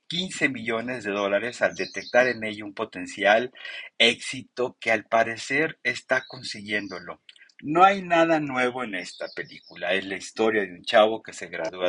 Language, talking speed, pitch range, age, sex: Spanish, 160 wpm, 100-145 Hz, 50-69, male